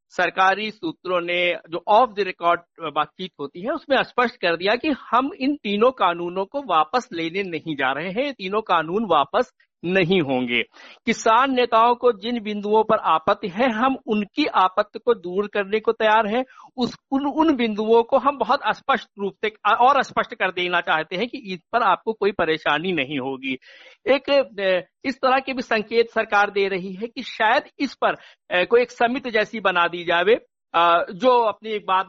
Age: 60-79